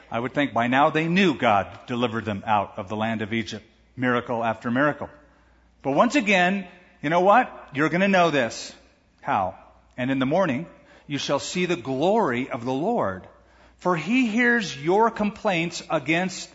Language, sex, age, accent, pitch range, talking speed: English, male, 50-69, American, 110-175 Hz, 180 wpm